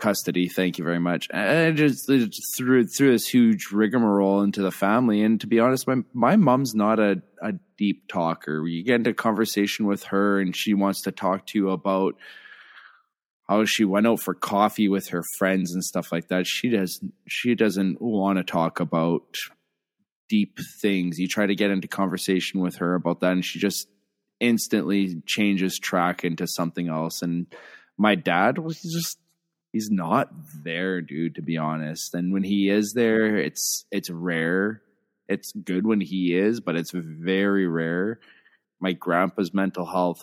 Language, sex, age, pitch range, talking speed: English, male, 20-39, 90-105 Hz, 175 wpm